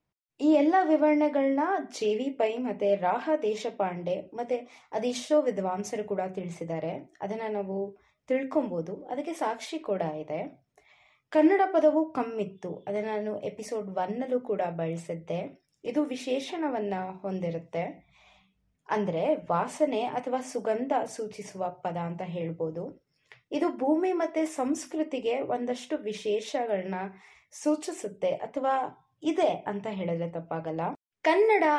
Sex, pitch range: female, 195-295 Hz